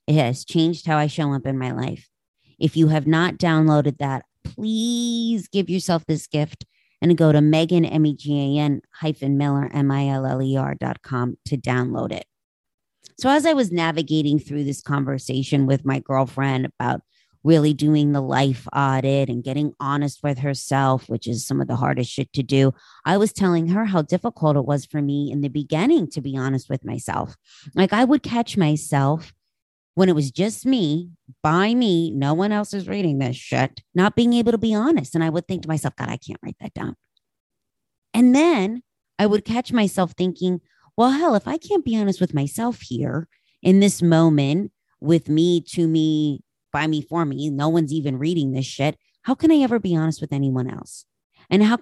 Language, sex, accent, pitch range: English, female, American, 140-185 Hz